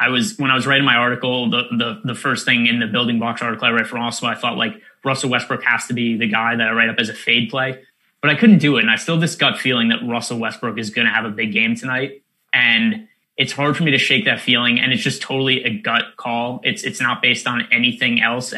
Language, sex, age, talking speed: English, male, 20-39, 280 wpm